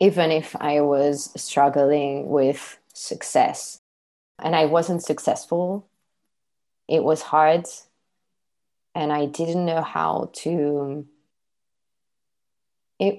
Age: 20-39